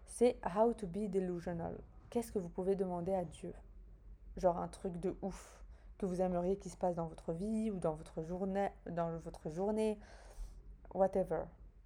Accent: French